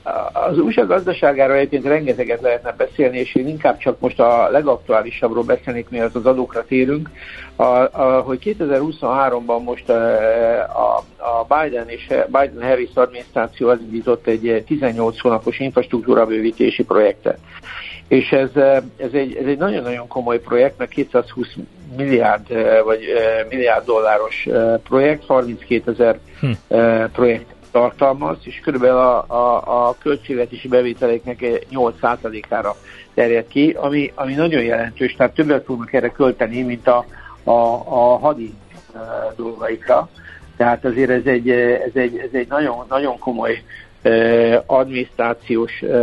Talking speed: 120 wpm